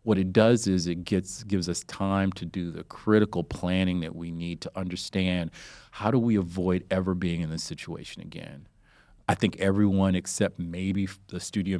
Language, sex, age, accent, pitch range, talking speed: English, male, 40-59, American, 90-105 Hz, 185 wpm